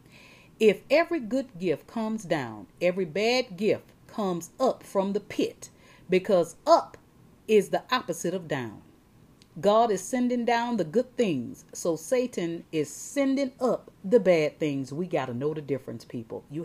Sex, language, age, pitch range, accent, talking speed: female, English, 40-59, 170-250 Hz, American, 160 wpm